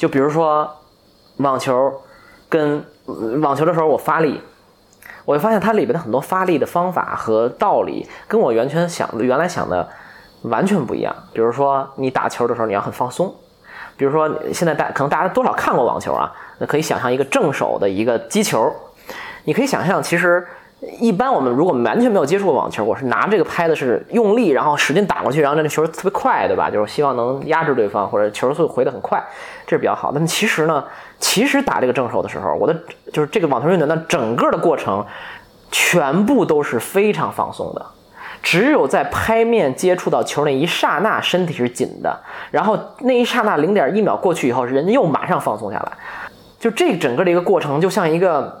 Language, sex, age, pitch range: English, male, 20-39, 135-205 Hz